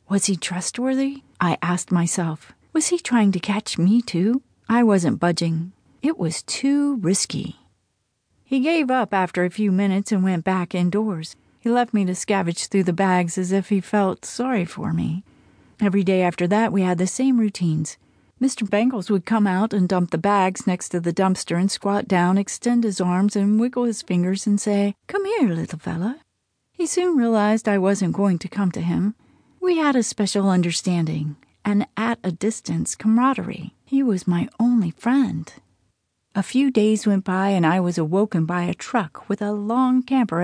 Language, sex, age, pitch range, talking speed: English, female, 40-59, 180-230 Hz, 185 wpm